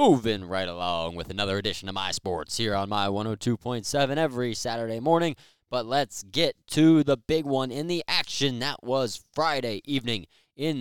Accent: American